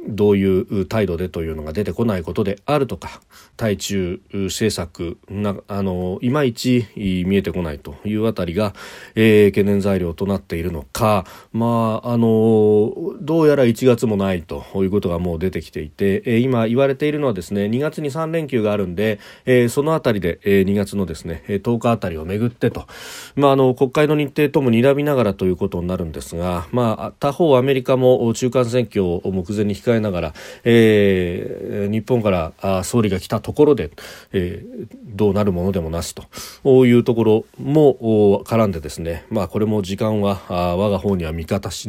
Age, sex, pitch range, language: 40-59, male, 95-125 Hz, Japanese